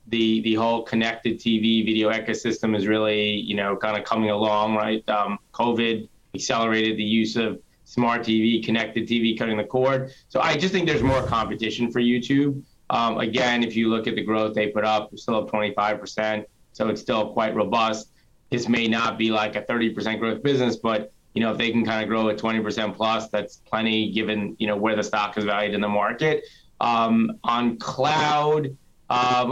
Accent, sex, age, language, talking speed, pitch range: American, male, 30-49, English, 195 wpm, 110-125 Hz